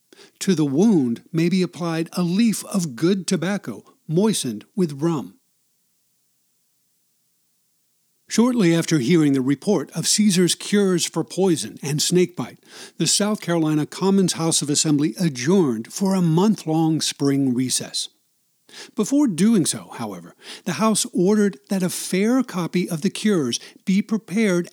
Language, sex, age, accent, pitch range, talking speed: English, male, 60-79, American, 155-200 Hz, 135 wpm